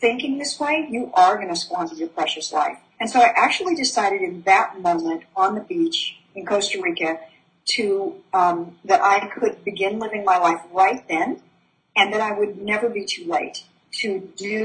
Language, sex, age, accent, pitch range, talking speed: English, female, 50-69, American, 185-240 Hz, 190 wpm